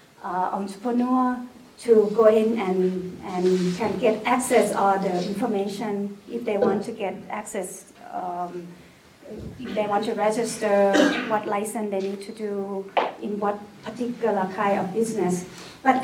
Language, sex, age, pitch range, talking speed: English, female, 30-49, 200-245 Hz, 145 wpm